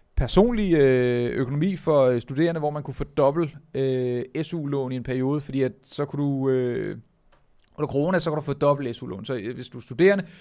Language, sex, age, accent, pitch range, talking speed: Danish, male, 30-49, native, 130-150 Hz, 190 wpm